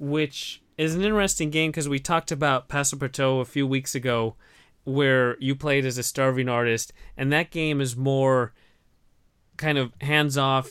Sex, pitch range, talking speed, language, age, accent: male, 120-145 Hz, 170 wpm, English, 20-39, American